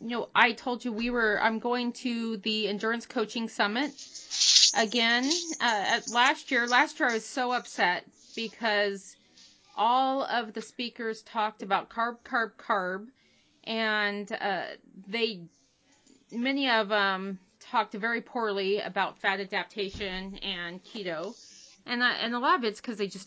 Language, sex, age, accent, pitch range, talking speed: English, female, 30-49, American, 195-235 Hz, 150 wpm